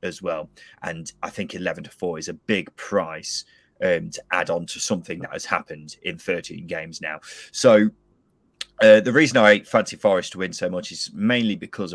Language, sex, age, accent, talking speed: English, male, 30-49, British, 200 wpm